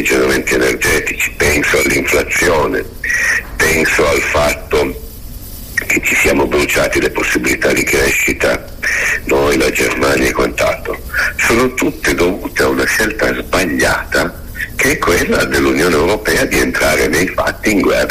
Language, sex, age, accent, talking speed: Italian, male, 60-79, native, 125 wpm